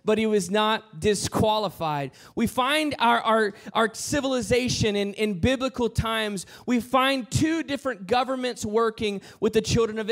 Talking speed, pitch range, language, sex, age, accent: 150 wpm, 215-260 Hz, English, male, 20-39, American